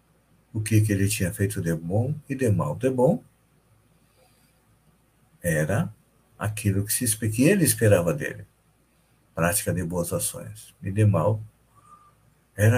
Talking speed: 130 wpm